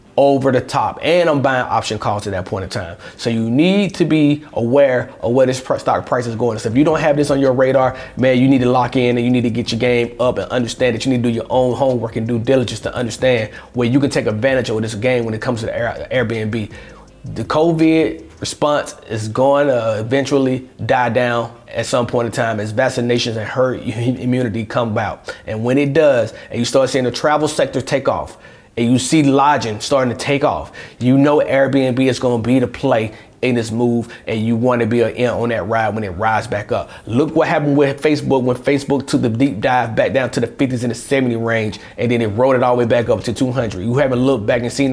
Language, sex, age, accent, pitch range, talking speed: English, male, 30-49, American, 115-140 Hz, 245 wpm